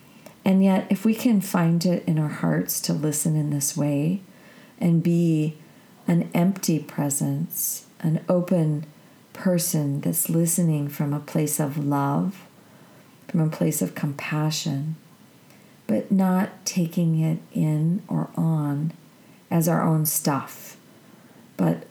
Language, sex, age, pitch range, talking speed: English, female, 40-59, 150-185 Hz, 130 wpm